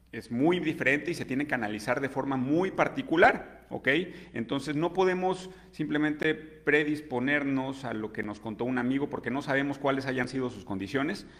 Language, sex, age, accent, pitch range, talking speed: Spanish, male, 40-59, Mexican, 115-155 Hz, 175 wpm